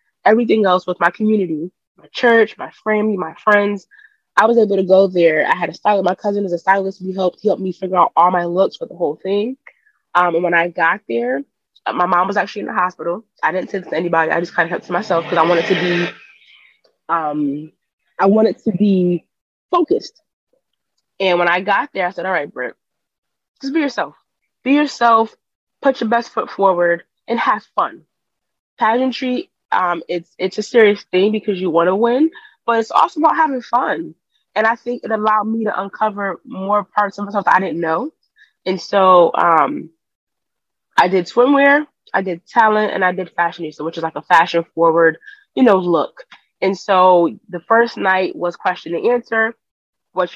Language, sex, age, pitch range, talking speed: English, female, 20-39, 175-235 Hz, 195 wpm